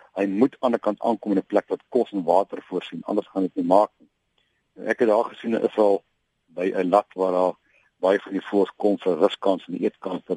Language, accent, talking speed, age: Dutch, Dutch, 225 wpm, 50-69